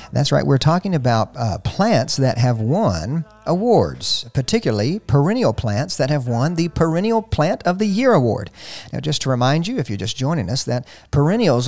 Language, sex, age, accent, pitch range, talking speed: English, male, 50-69, American, 115-150 Hz, 185 wpm